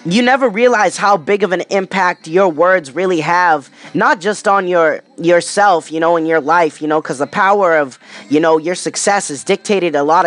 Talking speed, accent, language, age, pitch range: 210 wpm, American, English, 20-39, 175-215 Hz